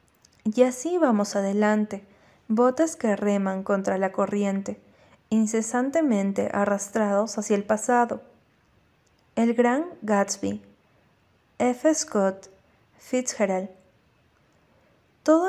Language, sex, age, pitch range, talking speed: Spanish, female, 30-49, 200-240 Hz, 85 wpm